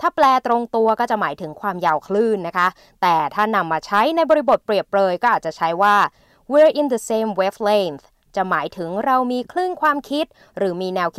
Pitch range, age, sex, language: 195-255 Hz, 20-39, female, Thai